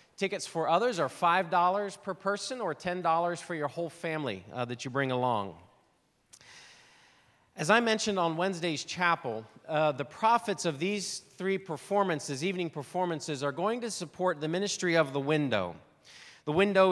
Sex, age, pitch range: male, 40-59, 140-185 Hz